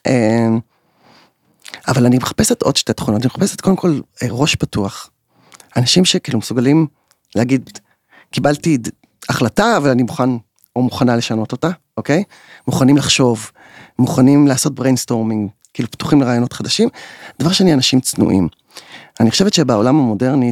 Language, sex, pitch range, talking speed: Hebrew, male, 110-145 Hz, 130 wpm